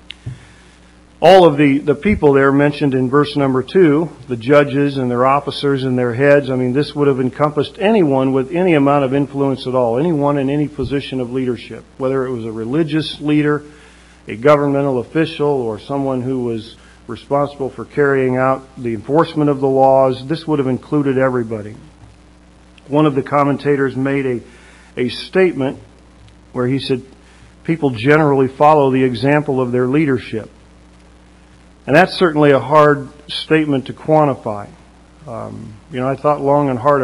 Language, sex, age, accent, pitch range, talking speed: English, male, 50-69, American, 115-145 Hz, 165 wpm